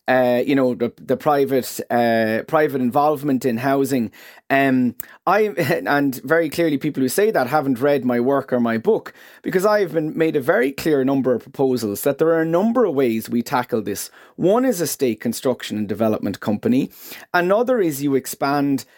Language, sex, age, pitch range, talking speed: English, male, 30-49, 130-170 Hz, 190 wpm